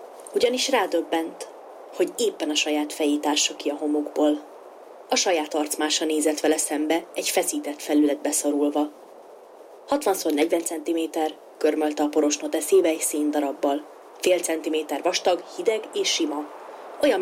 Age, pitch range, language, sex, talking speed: 30-49, 150-175 Hz, Hungarian, female, 120 wpm